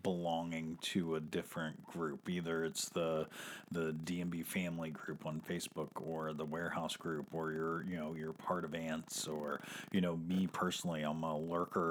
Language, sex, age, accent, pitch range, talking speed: English, male, 40-59, American, 80-100 Hz, 170 wpm